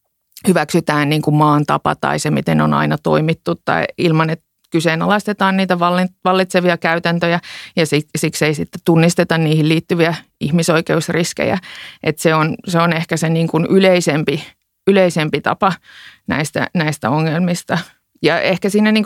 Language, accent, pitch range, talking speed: Finnish, native, 150-175 Hz, 140 wpm